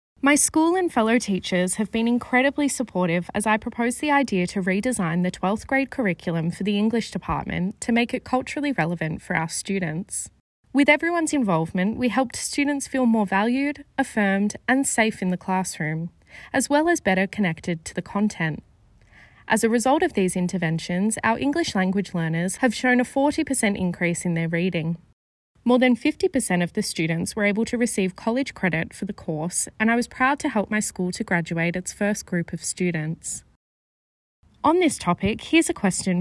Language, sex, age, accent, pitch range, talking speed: English, female, 20-39, Australian, 180-255 Hz, 180 wpm